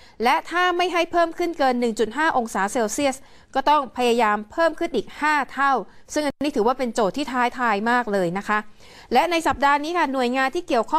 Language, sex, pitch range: Thai, female, 225-290 Hz